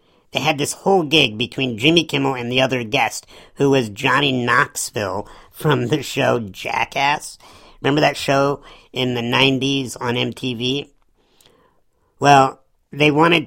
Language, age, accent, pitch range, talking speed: English, 50-69, American, 120-150 Hz, 140 wpm